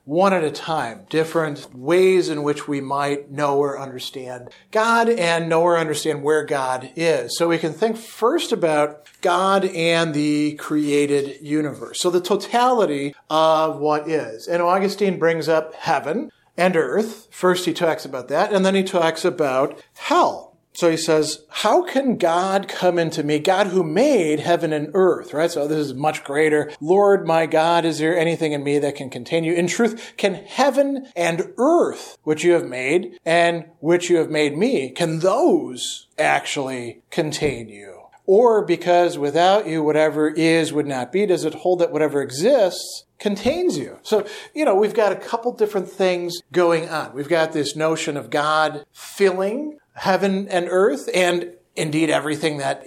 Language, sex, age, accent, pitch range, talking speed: English, male, 40-59, American, 150-185 Hz, 175 wpm